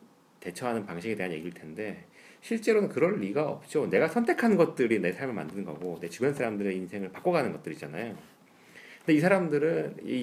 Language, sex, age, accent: English, male, 40-59, Korean